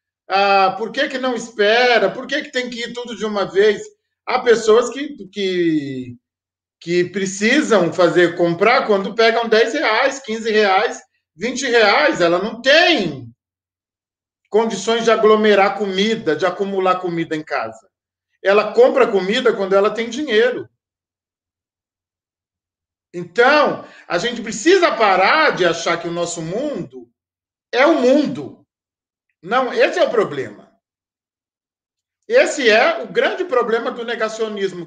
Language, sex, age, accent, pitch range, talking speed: Portuguese, male, 40-59, Brazilian, 165-245 Hz, 135 wpm